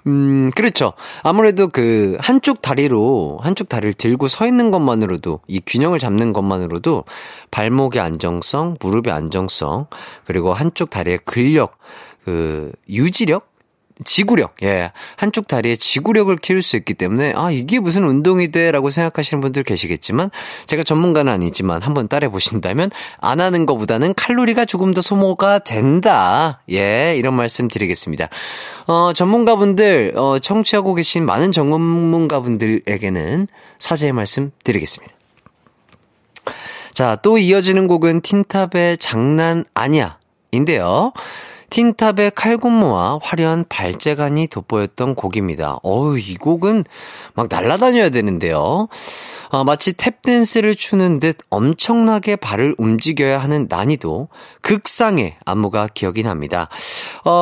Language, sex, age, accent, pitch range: Korean, male, 30-49, native, 110-185 Hz